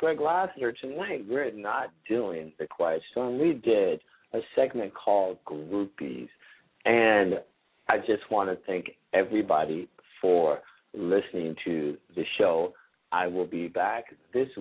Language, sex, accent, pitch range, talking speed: English, male, American, 95-130 Hz, 130 wpm